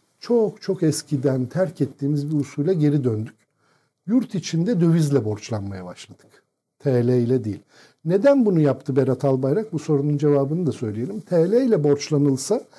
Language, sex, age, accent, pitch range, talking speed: Turkish, male, 50-69, native, 135-175 Hz, 140 wpm